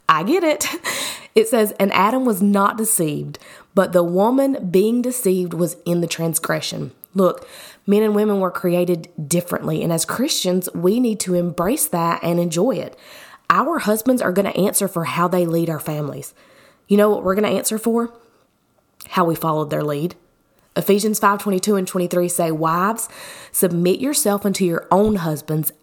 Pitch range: 170-210 Hz